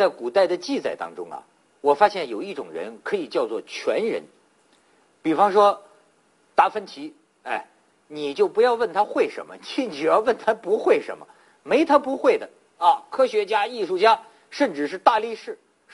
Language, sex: Chinese, male